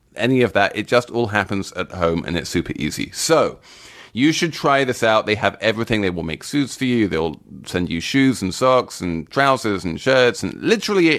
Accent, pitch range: British, 100-130 Hz